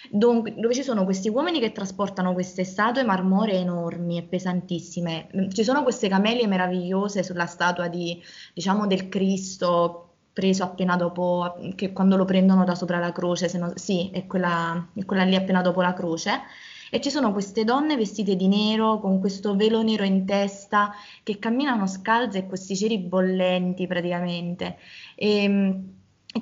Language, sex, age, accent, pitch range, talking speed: Italian, female, 20-39, native, 180-210 Hz, 165 wpm